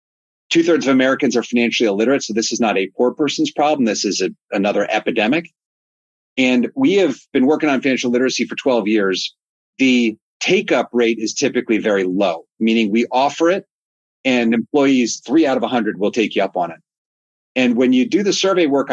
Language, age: English, 40-59